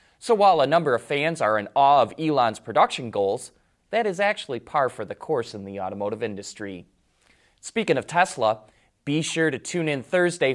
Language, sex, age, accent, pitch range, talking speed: English, male, 20-39, American, 130-195 Hz, 190 wpm